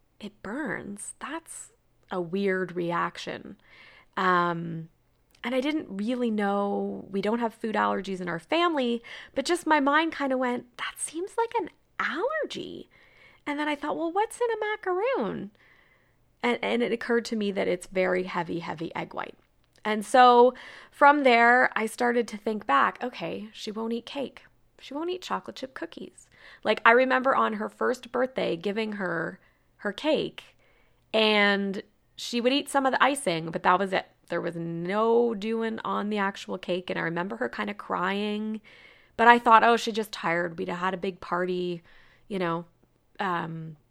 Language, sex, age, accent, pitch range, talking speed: English, female, 30-49, American, 185-245 Hz, 175 wpm